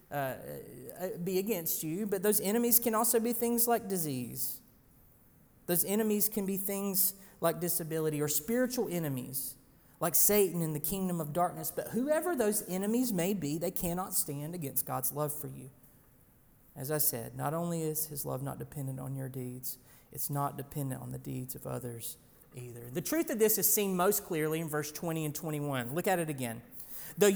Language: English